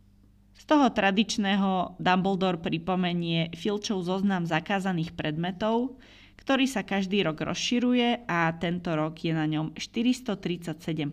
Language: Slovak